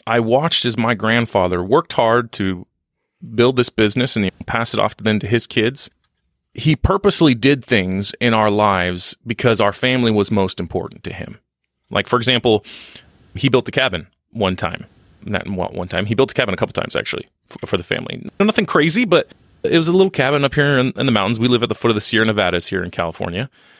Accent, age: American, 30-49